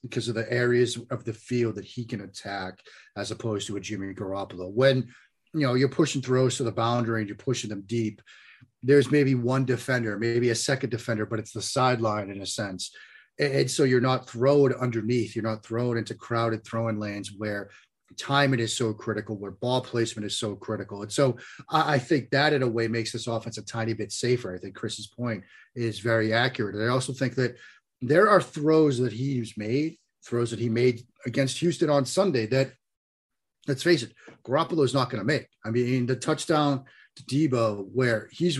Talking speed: 205 wpm